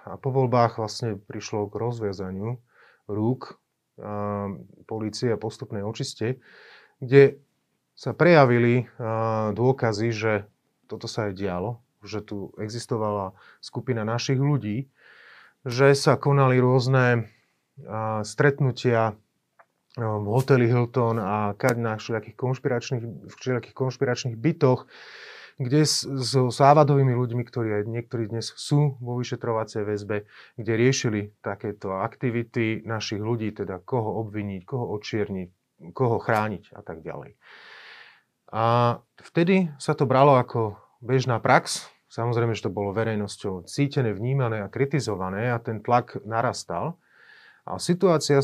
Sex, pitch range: male, 105-130 Hz